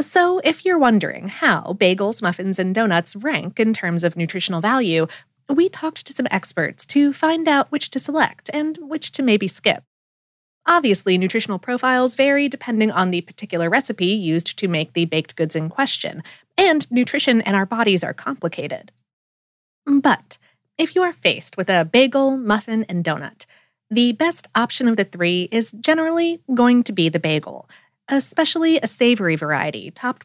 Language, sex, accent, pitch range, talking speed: English, female, American, 180-275 Hz, 165 wpm